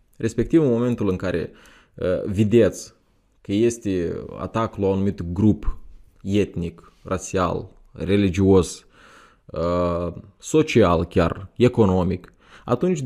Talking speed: 100 wpm